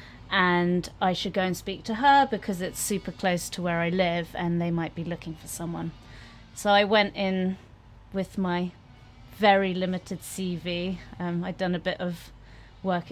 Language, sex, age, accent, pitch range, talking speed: English, female, 30-49, British, 165-185 Hz, 180 wpm